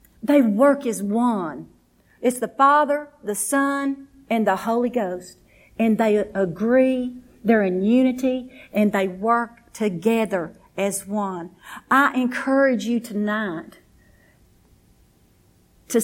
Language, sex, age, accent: English, female, 50-69, American